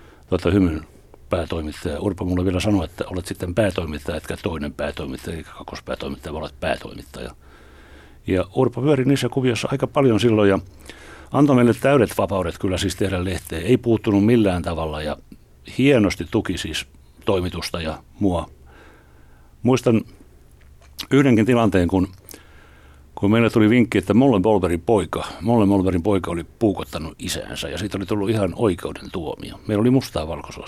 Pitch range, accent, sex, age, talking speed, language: 75-105 Hz, native, male, 60-79, 145 wpm, Finnish